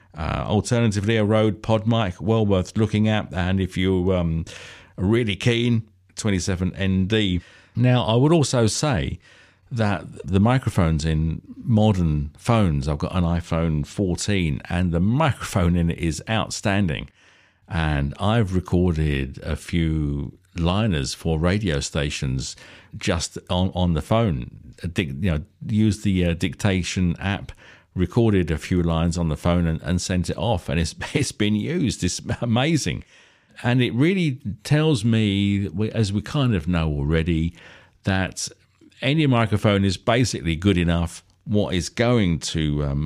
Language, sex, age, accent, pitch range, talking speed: English, male, 50-69, British, 80-105 Hz, 145 wpm